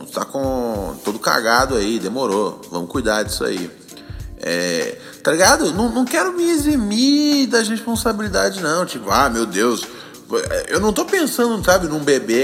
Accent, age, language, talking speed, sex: Brazilian, 20-39, Portuguese, 155 wpm, male